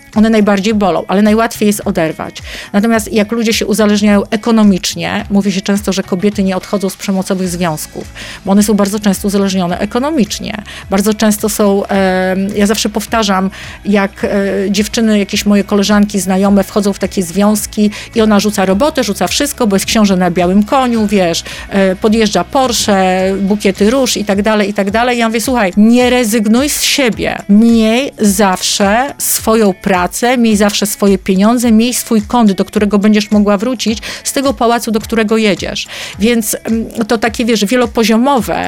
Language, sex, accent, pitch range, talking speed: Polish, female, native, 195-225 Hz, 165 wpm